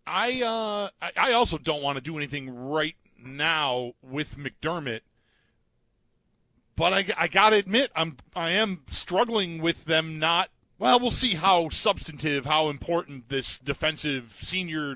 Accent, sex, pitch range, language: American, male, 130-170 Hz, English